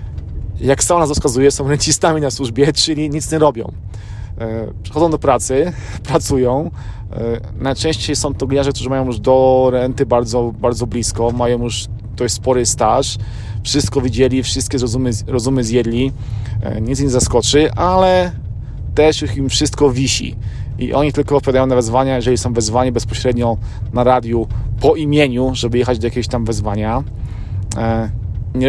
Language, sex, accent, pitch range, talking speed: Polish, male, native, 110-135 Hz, 140 wpm